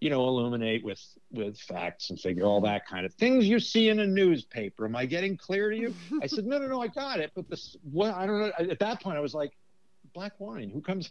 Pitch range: 125-210 Hz